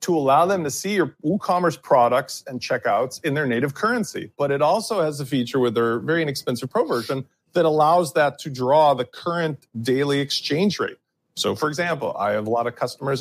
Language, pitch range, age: English, 125-170 Hz, 40-59